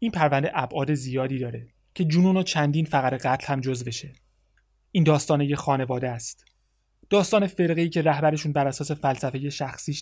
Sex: male